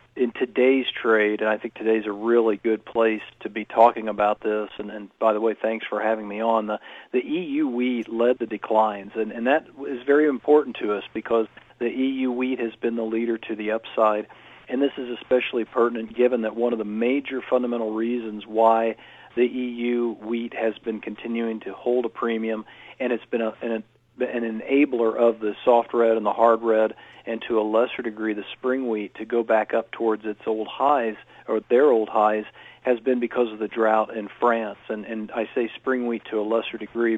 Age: 40-59